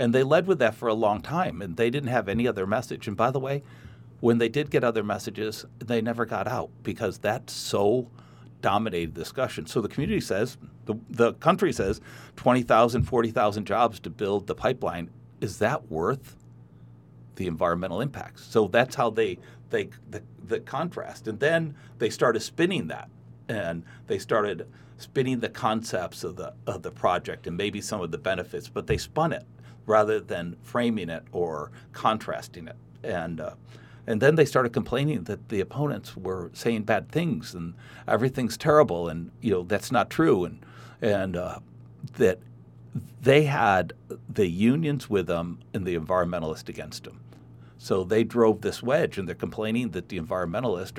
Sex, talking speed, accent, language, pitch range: male, 175 wpm, American, English, 85-125 Hz